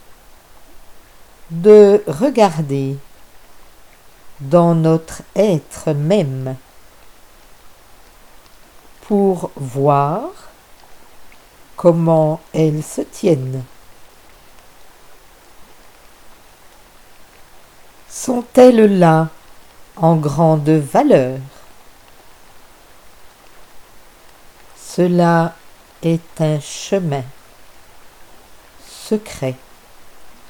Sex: female